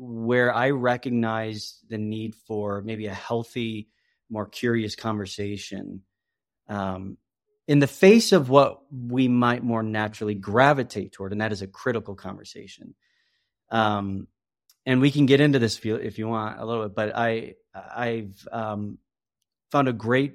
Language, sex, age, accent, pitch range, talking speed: English, male, 30-49, American, 100-120 Hz, 145 wpm